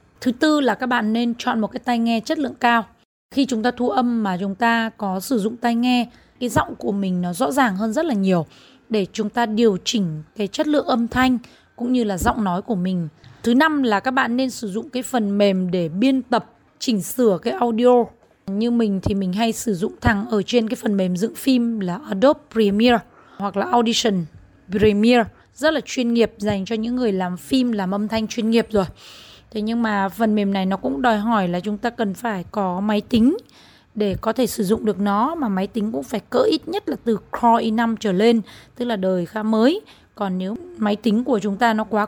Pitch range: 200-245 Hz